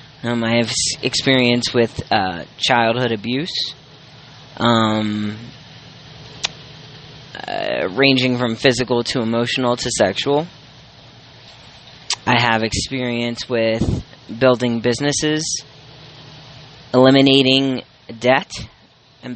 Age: 10-29